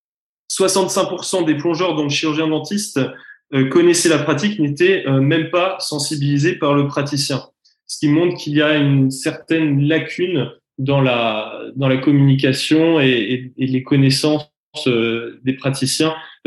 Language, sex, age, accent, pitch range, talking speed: French, male, 20-39, French, 140-170 Hz, 135 wpm